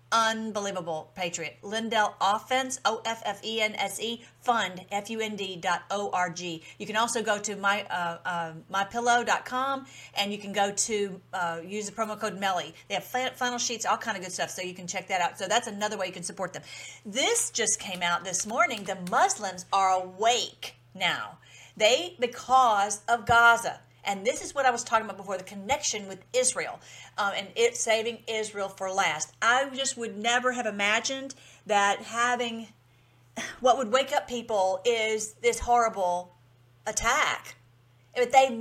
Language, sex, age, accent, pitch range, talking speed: English, female, 40-59, American, 190-250 Hz, 165 wpm